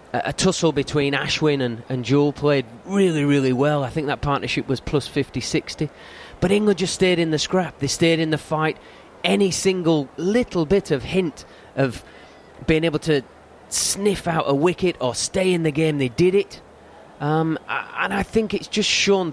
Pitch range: 125-160 Hz